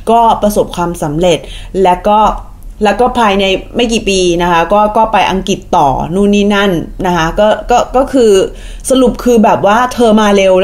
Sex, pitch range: female, 200-270 Hz